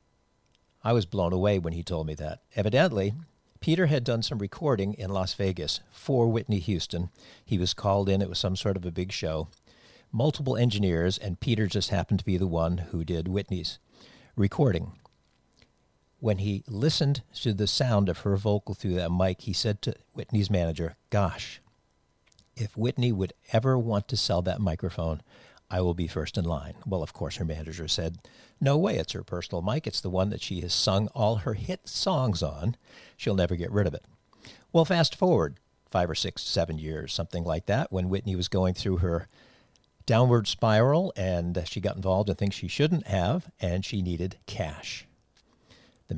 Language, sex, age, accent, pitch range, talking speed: English, male, 50-69, American, 90-110 Hz, 185 wpm